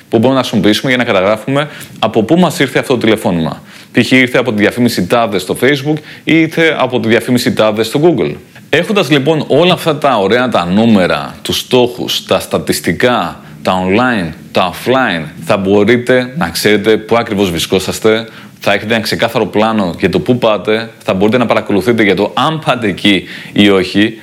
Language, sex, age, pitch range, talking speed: Greek, male, 30-49, 110-130 Hz, 180 wpm